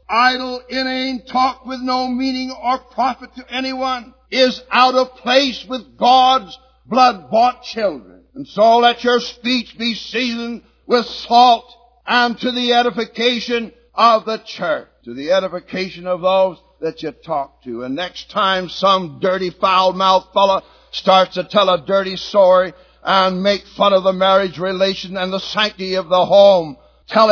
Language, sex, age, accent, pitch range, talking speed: English, male, 60-79, American, 170-250 Hz, 155 wpm